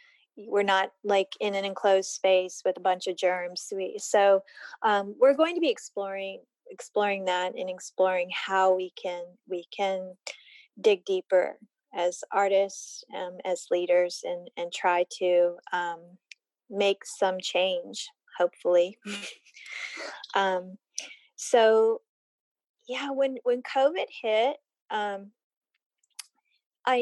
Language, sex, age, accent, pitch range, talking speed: English, female, 30-49, American, 190-265 Hz, 120 wpm